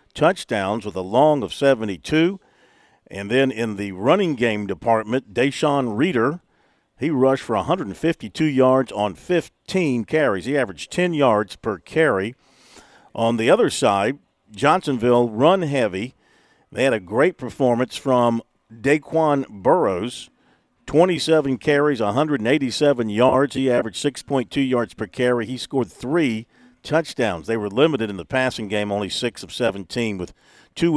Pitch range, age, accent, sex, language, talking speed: 115-145 Hz, 50-69, American, male, English, 140 wpm